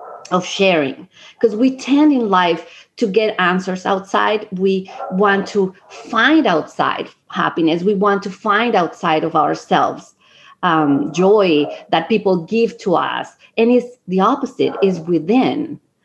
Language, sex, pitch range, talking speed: English, female, 175-230 Hz, 140 wpm